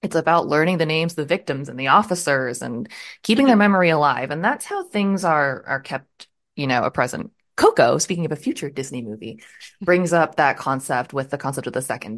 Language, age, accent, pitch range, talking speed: English, 20-39, American, 135-170 Hz, 215 wpm